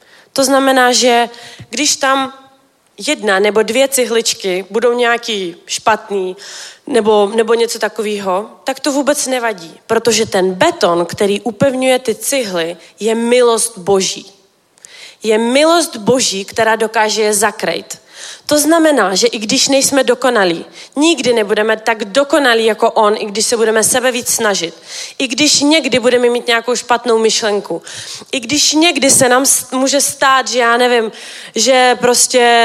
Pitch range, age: 210-255 Hz, 30-49